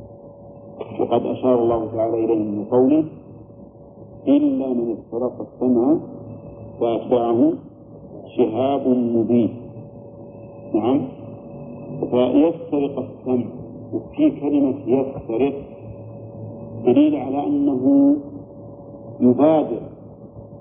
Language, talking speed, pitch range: Arabic, 65 wpm, 115-140 Hz